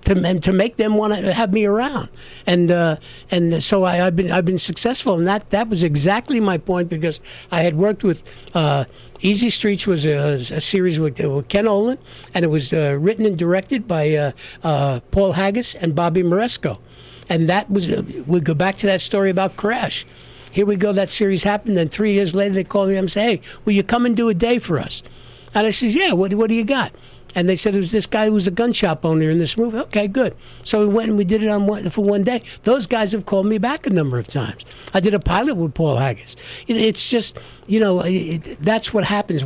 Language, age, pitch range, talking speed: English, 60-79, 170-215 Hz, 245 wpm